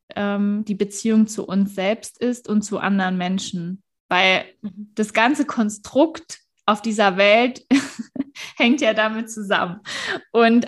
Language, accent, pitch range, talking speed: German, German, 210-245 Hz, 125 wpm